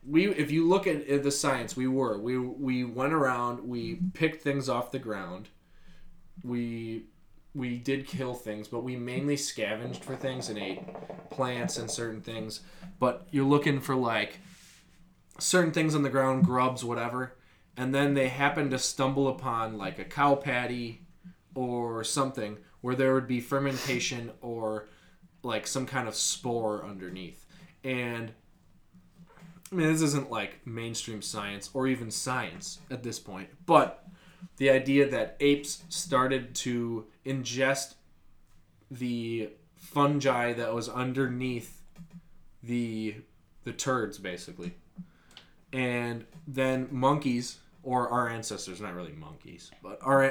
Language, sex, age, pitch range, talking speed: English, male, 20-39, 115-140 Hz, 135 wpm